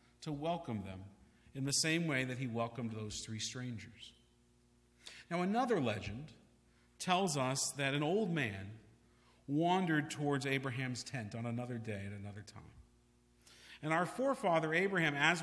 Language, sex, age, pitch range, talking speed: English, male, 50-69, 105-165 Hz, 145 wpm